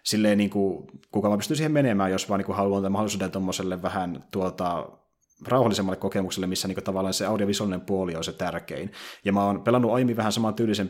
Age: 30-49